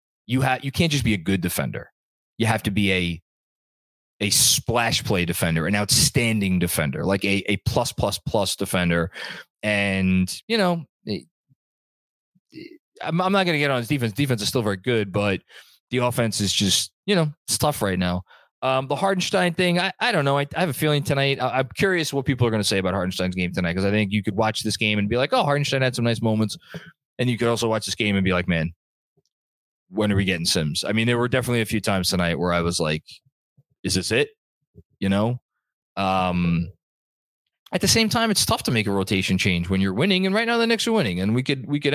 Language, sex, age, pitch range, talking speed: English, male, 20-39, 95-140 Hz, 230 wpm